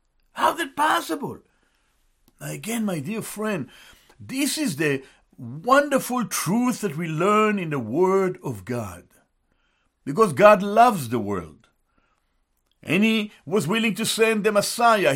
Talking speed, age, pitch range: 135 wpm, 60-79, 185-245 Hz